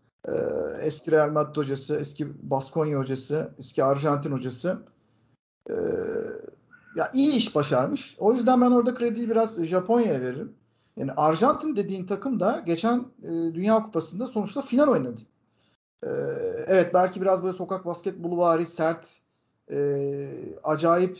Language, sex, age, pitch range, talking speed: Turkish, male, 50-69, 160-235 Hz, 130 wpm